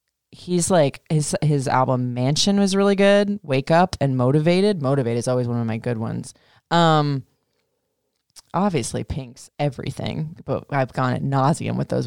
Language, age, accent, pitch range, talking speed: English, 20-39, American, 135-185 Hz, 160 wpm